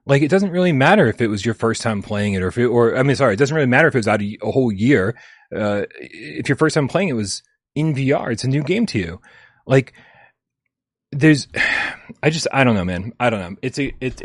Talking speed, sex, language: 255 wpm, male, English